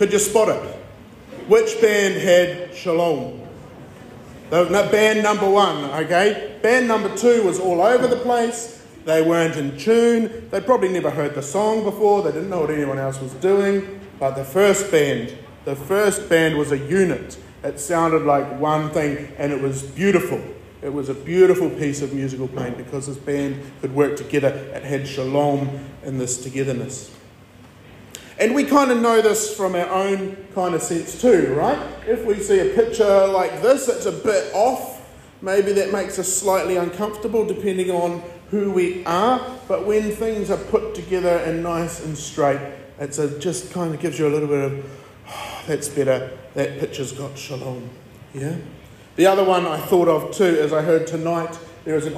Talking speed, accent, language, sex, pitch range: 180 wpm, Australian, English, male, 140-200 Hz